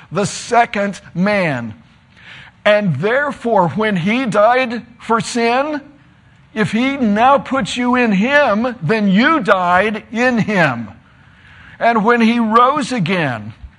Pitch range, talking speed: 175-230 Hz, 120 wpm